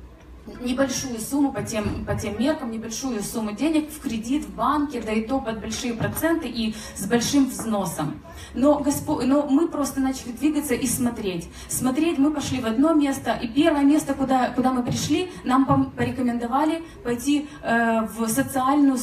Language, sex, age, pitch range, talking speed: Russian, female, 20-39, 230-280 Hz, 160 wpm